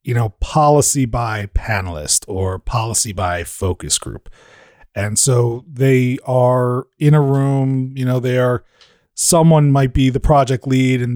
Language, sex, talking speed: English, male, 150 wpm